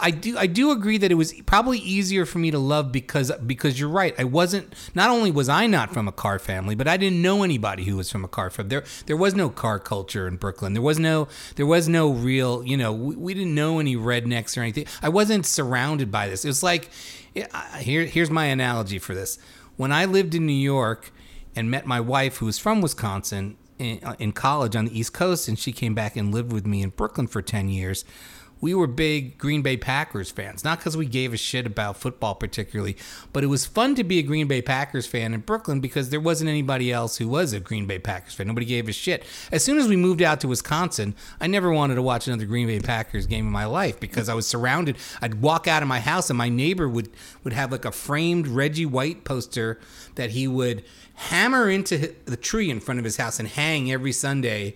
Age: 30-49